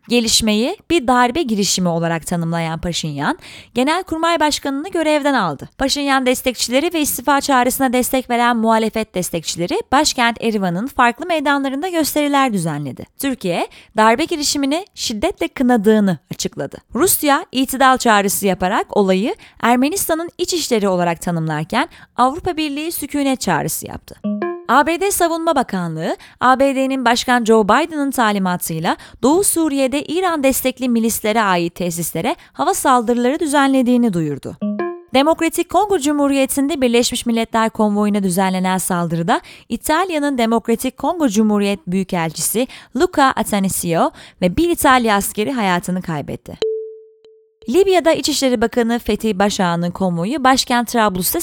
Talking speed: 110 wpm